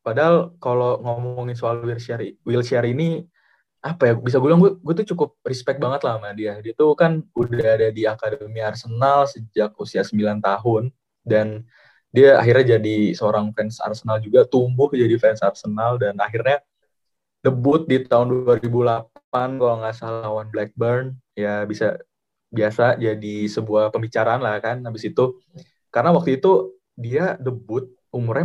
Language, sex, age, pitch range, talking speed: Indonesian, male, 20-39, 110-130 Hz, 150 wpm